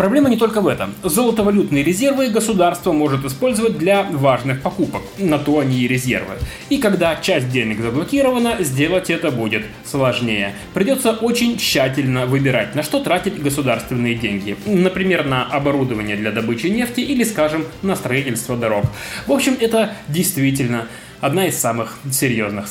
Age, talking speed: 20-39, 145 wpm